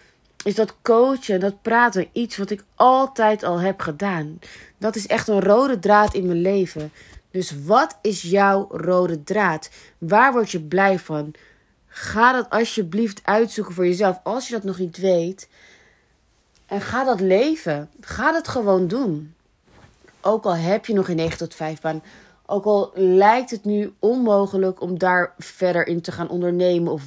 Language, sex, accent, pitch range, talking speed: Dutch, female, Dutch, 175-220 Hz, 170 wpm